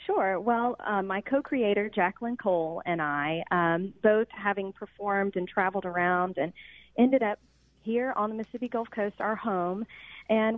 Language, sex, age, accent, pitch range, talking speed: English, female, 30-49, American, 175-220 Hz, 160 wpm